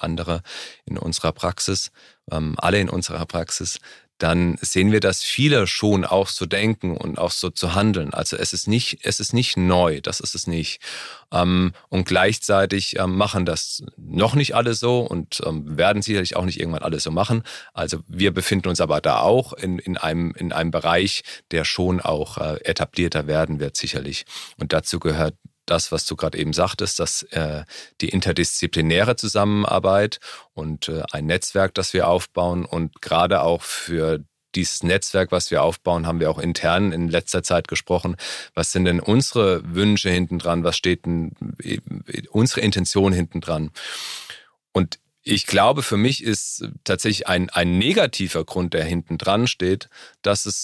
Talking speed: 165 wpm